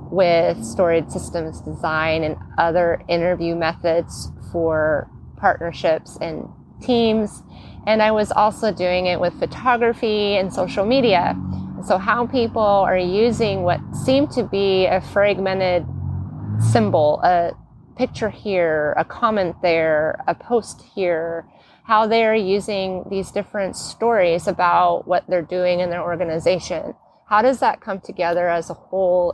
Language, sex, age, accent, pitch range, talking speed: English, female, 30-49, American, 170-215 Hz, 135 wpm